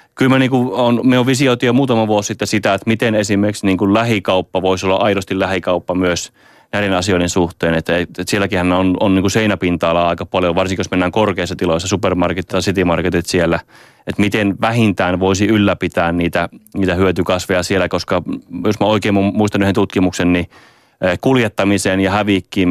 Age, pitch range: 30-49, 90-110 Hz